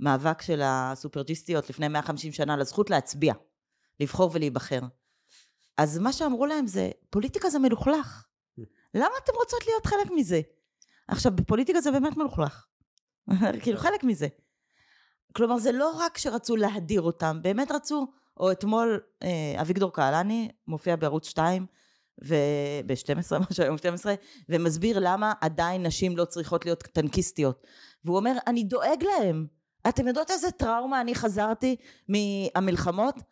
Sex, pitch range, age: female, 165-245 Hz, 20-39